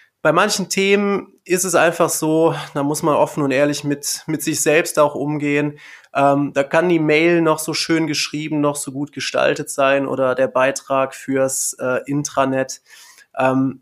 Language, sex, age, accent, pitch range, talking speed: German, male, 20-39, German, 135-165 Hz, 175 wpm